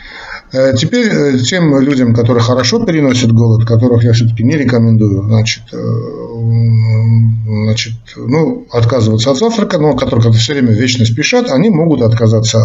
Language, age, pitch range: Russian, 50-69, 115-130 Hz